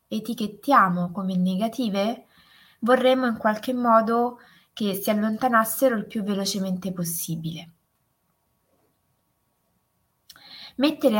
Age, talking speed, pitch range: 20-39, 80 wpm, 185-250 Hz